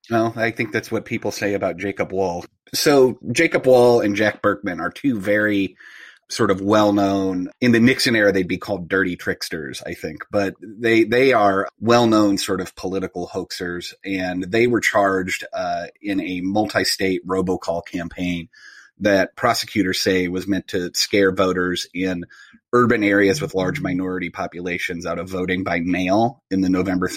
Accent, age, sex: American, 30-49, male